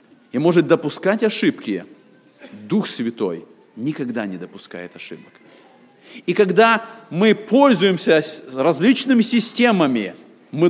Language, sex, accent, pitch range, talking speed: Russian, male, native, 145-225 Hz, 95 wpm